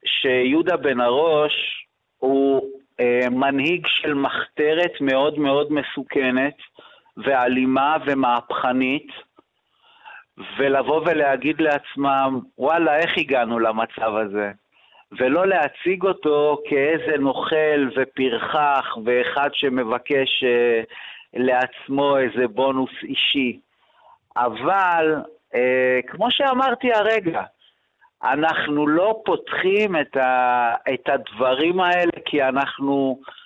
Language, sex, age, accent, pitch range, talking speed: Hebrew, male, 50-69, native, 130-165 Hz, 85 wpm